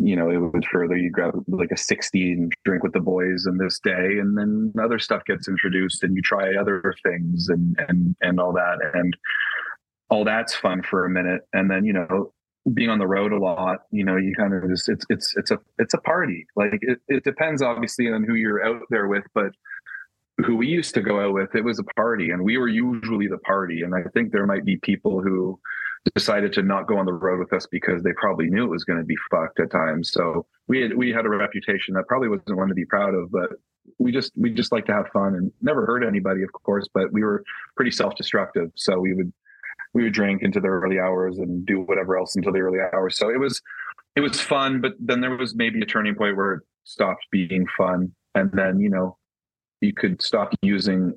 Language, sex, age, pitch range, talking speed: English, male, 30-49, 90-105 Hz, 235 wpm